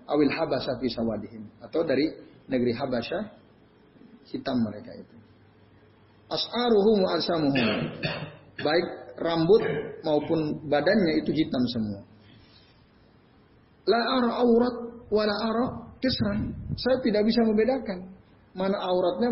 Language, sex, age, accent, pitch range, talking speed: Indonesian, male, 40-59, native, 115-190 Hz, 80 wpm